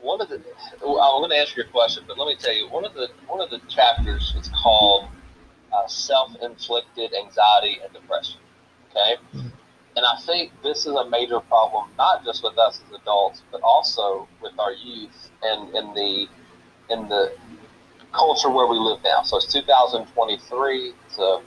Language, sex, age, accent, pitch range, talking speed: English, male, 30-49, American, 110-145 Hz, 170 wpm